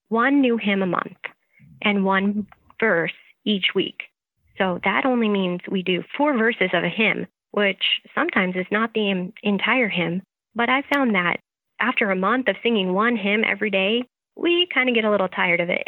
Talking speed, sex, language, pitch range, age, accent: 190 wpm, female, English, 185-225 Hz, 30-49, American